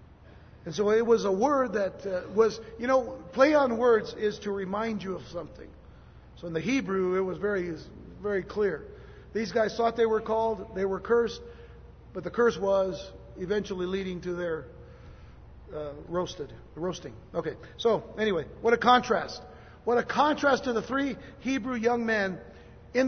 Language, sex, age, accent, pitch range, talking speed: English, male, 50-69, American, 190-230 Hz, 170 wpm